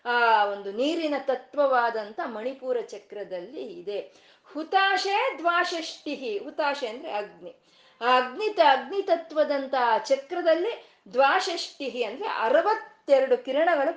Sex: female